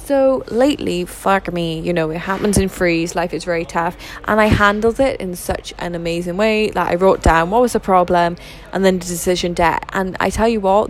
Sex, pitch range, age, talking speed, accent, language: female, 175-205 Hz, 10-29, 225 wpm, British, English